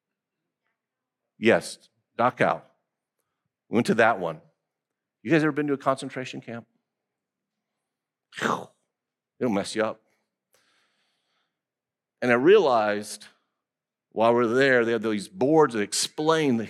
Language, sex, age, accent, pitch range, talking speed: English, male, 50-69, American, 125-170 Hz, 120 wpm